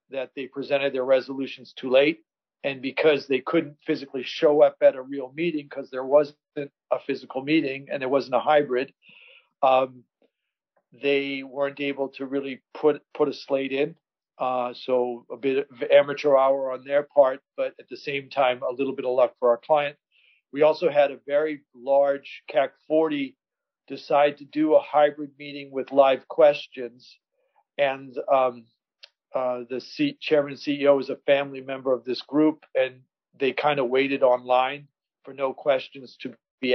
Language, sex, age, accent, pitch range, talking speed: English, male, 50-69, American, 135-150 Hz, 170 wpm